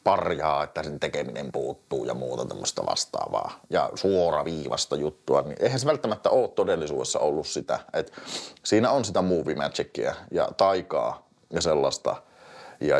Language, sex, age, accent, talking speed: Finnish, male, 30-49, native, 140 wpm